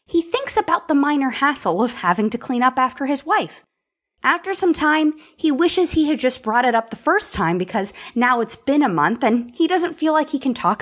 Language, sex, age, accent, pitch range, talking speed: English, female, 20-39, American, 215-310 Hz, 235 wpm